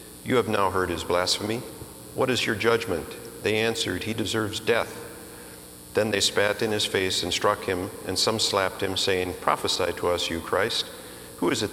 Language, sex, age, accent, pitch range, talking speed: English, male, 50-69, American, 80-110 Hz, 190 wpm